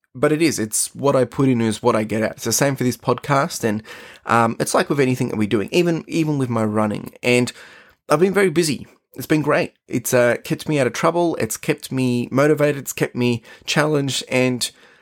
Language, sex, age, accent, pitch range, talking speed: English, male, 20-39, Australian, 120-150 Hz, 230 wpm